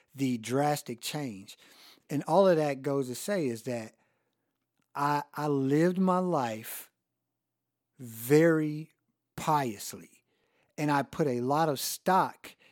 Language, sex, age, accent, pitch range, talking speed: English, male, 50-69, American, 130-160 Hz, 125 wpm